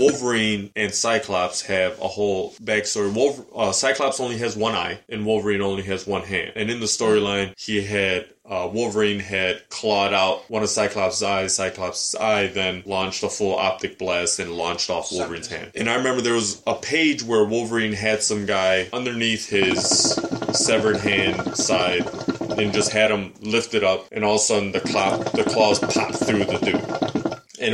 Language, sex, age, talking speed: English, male, 20-39, 185 wpm